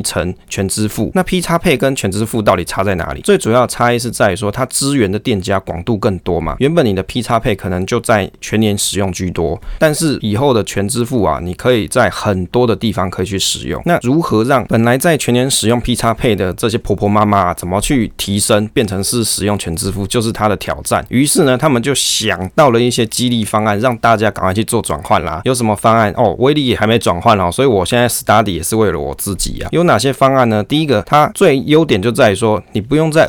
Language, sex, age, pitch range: Chinese, male, 20-39, 100-125 Hz